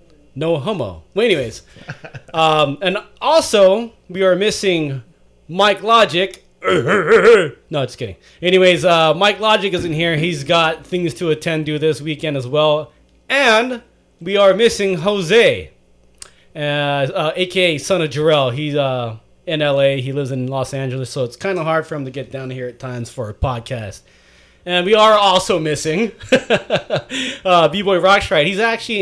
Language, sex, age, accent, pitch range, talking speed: English, male, 30-49, American, 145-190 Hz, 160 wpm